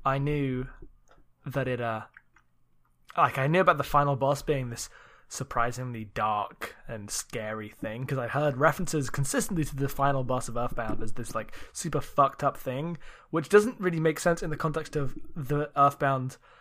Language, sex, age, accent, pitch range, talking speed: English, male, 10-29, British, 120-160 Hz, 175 wpm